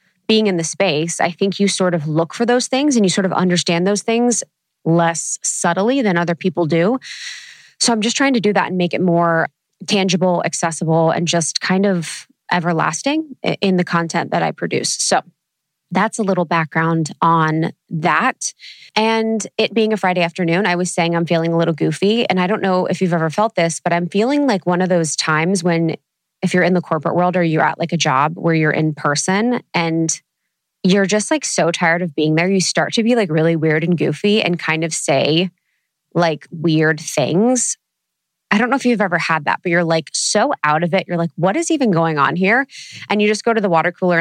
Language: English